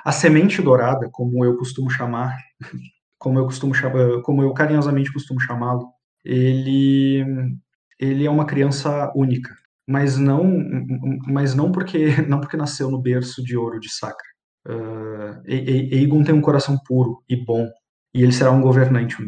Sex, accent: male, Brazilian